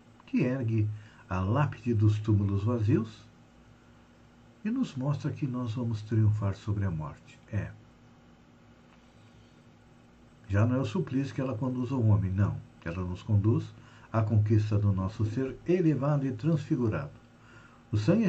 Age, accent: 60-79, Brazilian